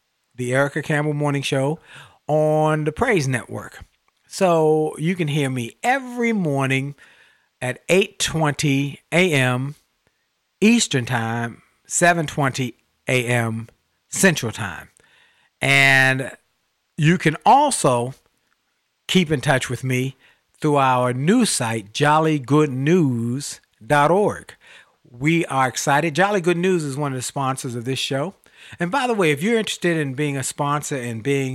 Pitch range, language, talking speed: 130-165 Hz, English, 125 wpm